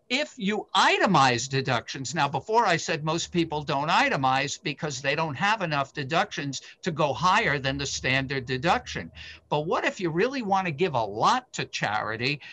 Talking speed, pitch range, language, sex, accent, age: 175 wpm, 150-200 Hz, English, male, American, 50-69